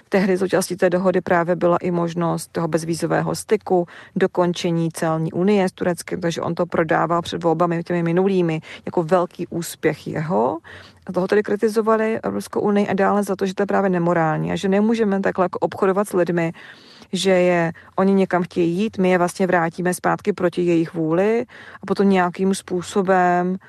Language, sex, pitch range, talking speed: Czech, female, 175-190 Hz, 170 wpm